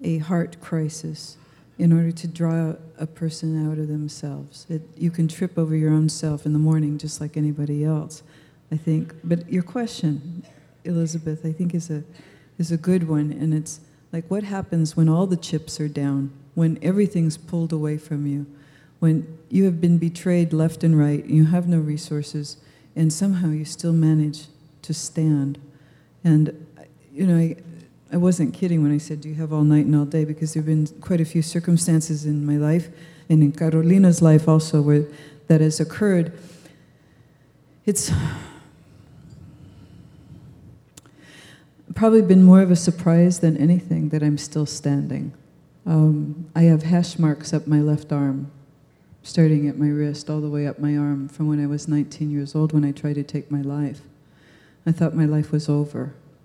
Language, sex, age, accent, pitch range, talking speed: English, female, 50-69, American, 150-165 Hz, 180 wpm